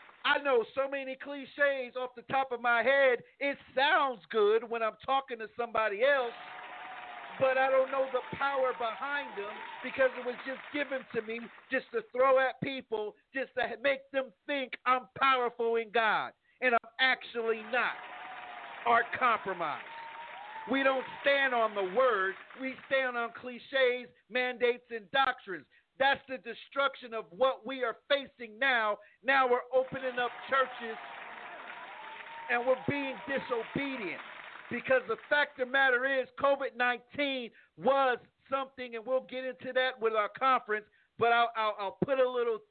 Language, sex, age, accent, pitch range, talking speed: English, male, 50-69, American, 235-270 Hz, 155 wpm